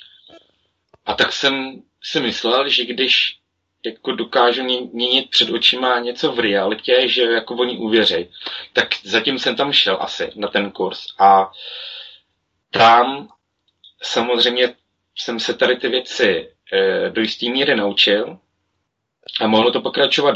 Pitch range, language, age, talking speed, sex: 105-125 Hz, Czech, 30-49, 130 wpm, male